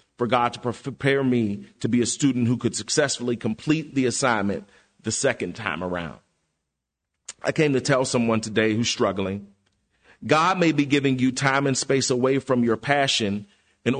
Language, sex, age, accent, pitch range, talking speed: English, male, 40-59, American, 115-145 Hz, 170 wpm